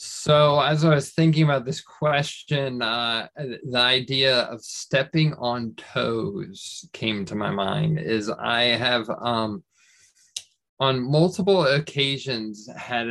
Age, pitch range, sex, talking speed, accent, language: 20-39, 115-145 Hz, male, 125 wpm, American, English